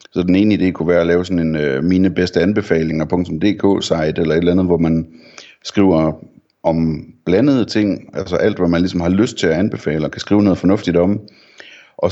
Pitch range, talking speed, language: 80-95 Hz, 210 wpm, Danish